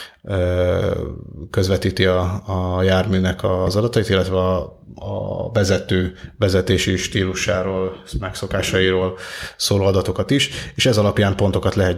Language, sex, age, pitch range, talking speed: Hungarian, male, 30-49, 95-105 Hz, 105 wpm